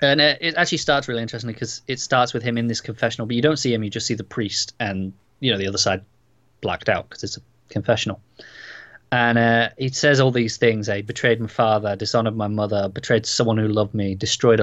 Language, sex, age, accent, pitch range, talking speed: English, male, 20-39, British, 110-125 Hz, 235 wpm